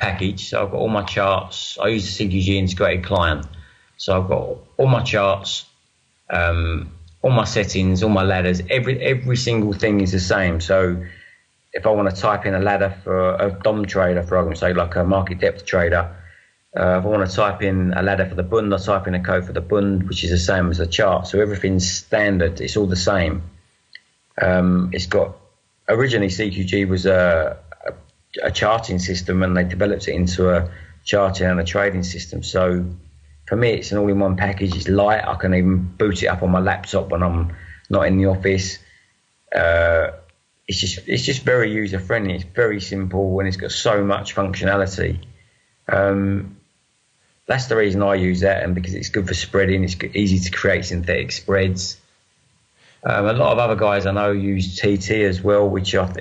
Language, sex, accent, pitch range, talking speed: English, male, British, 90-100 Hz, 195 wpm